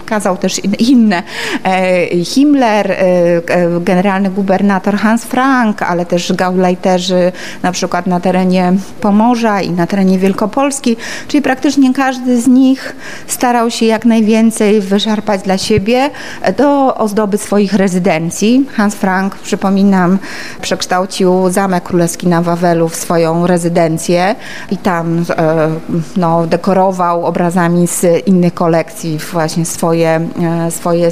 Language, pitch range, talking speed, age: Polish, 170-215 Hz, 110 wpm, 30-49